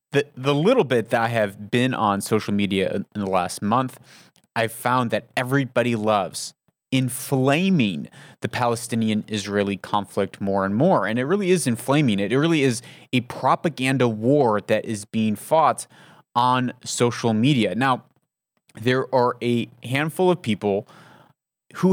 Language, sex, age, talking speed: English, male, 30-49, 150 wpm